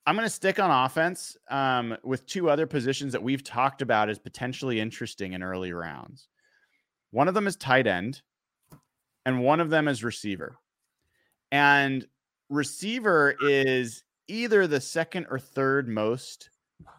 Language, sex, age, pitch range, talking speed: English, male, 30-49, 105-145 Hz, 150 wpm